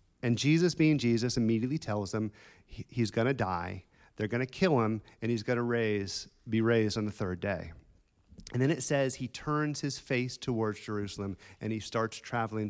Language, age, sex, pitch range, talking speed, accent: English, 40-59, male, 105-130 Hz, 195 wpm, American